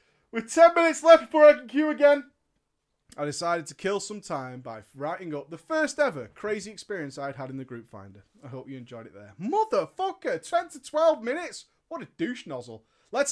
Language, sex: English, male